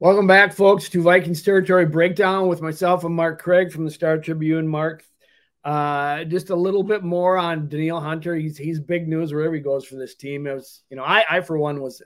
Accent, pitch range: American, 135-165 Hz